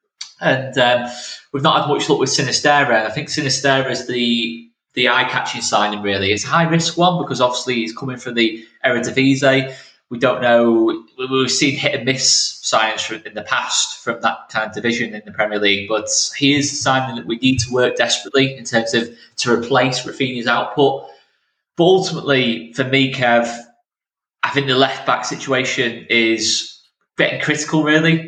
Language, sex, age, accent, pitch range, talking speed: English, male, 20-39, British, 115-140 Hz, 185 wpm